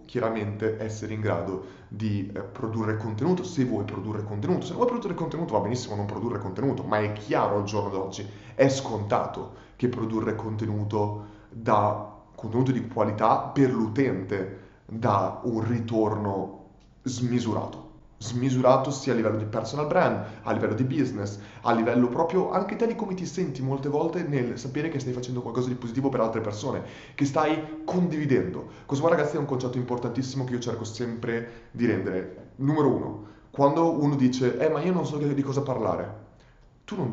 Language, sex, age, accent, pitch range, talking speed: Italian, male, 30-49, native, 110-135 Hz, 165 wpm